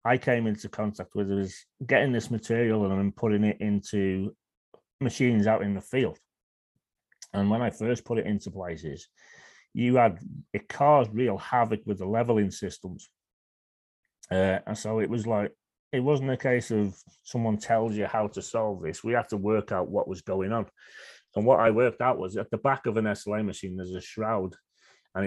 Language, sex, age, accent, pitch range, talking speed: English, male, 30-49, British, 105-120 Hz, 195 wpm